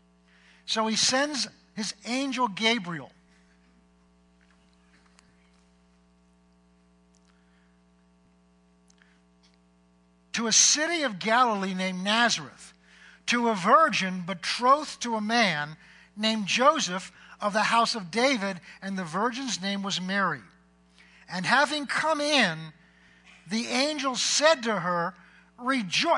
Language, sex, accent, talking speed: English, male, American, 100 wpm